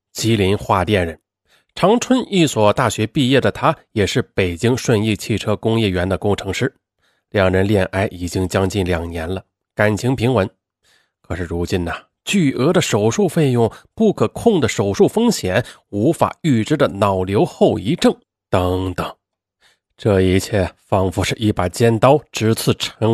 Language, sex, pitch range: Chinese, male, 95-135 Hz